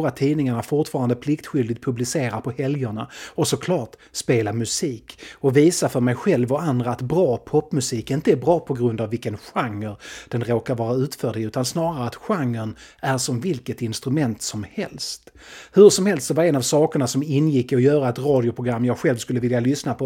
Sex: male